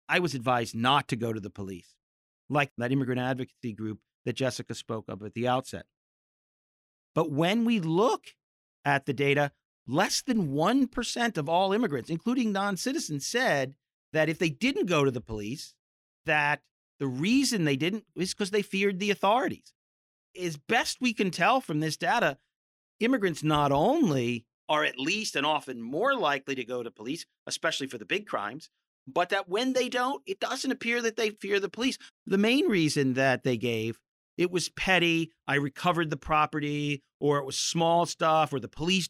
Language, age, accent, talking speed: English, 40-59, American, 180 wpm